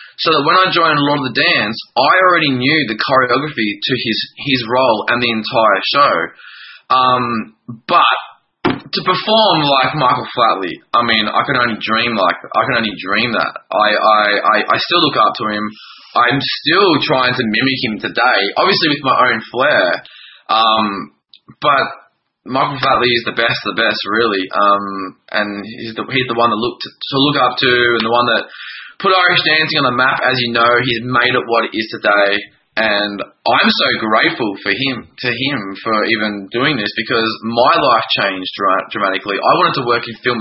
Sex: male